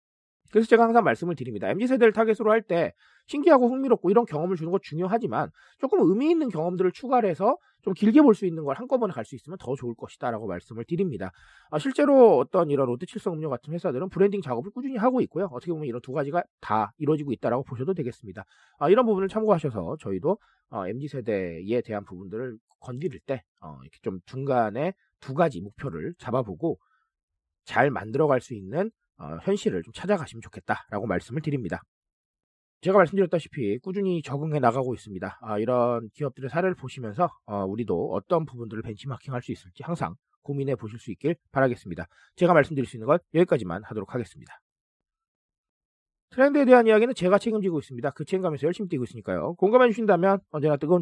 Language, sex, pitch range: Korean, male, 120-195 Hz